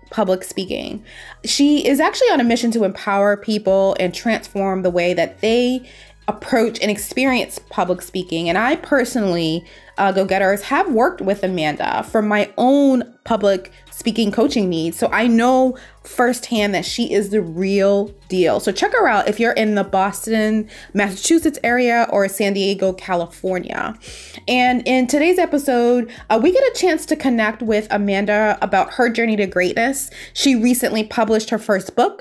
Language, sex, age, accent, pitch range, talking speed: English, female, 20-39, American, 200-245 Hz, 160 wpm